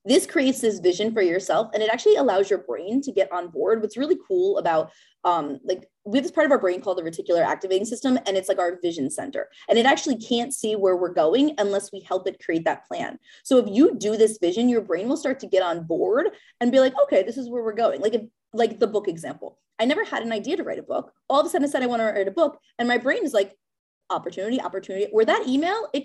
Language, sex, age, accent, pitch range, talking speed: English, female, 20-39, American, 195-275 Hz, 265 wpm